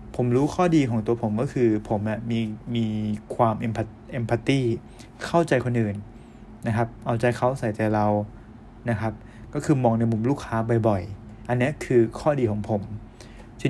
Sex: male